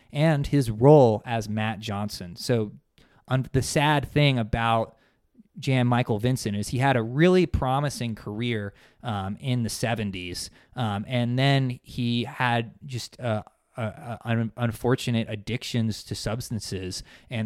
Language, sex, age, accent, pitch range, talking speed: English, male, 20-39, American, 105-135 Hz, 135 wpm